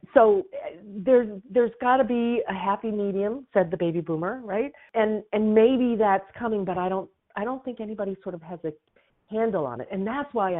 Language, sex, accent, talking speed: English, female, American, 205 wpm